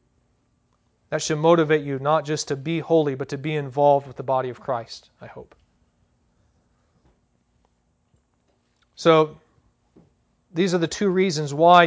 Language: English